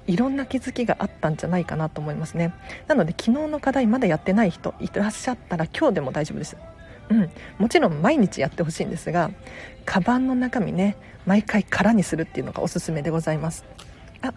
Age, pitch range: 40-59, 170-235 Hz